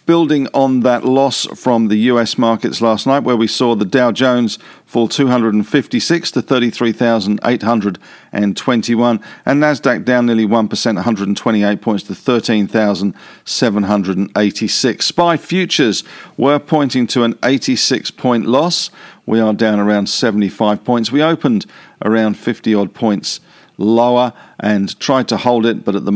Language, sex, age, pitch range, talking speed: English, male, 50-69, 105-130 Hz, 130 wpm